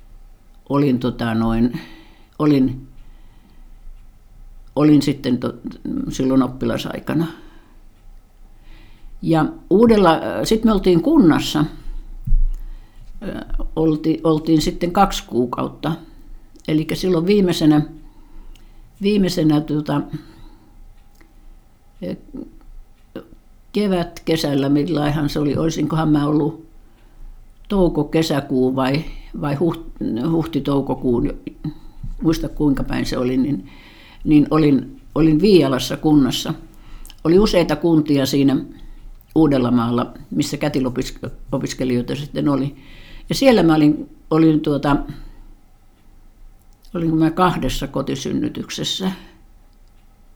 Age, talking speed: 60-79, 80 wpm